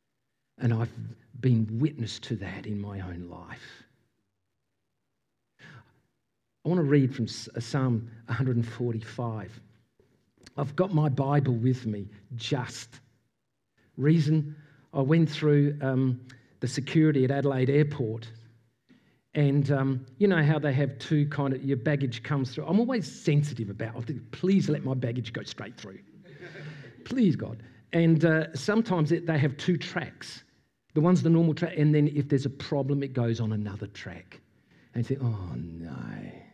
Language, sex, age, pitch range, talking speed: English, male, 50-69, 120-160 Hz, 145 wpm